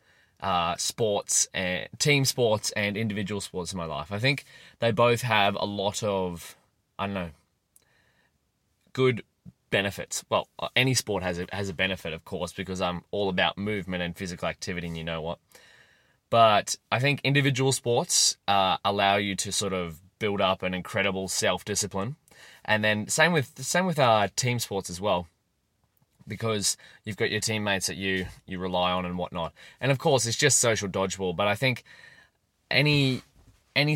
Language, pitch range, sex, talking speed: English, 95-120 Hz, male, 175 wpm